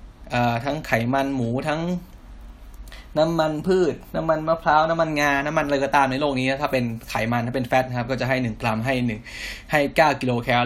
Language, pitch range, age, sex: Thai, 115-140 Hz, 10-29, male